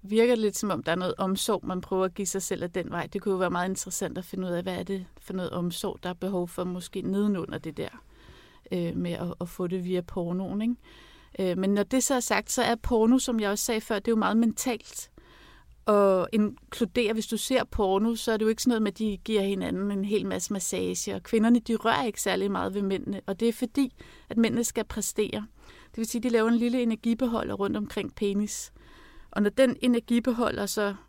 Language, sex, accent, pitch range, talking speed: Danish, female, native, 195-235 Hz, 235 wpm